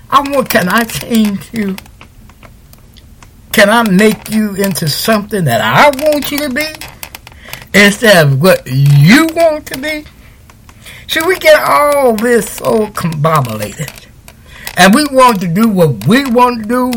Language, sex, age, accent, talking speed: English, male, 60-79, American, 140 wpm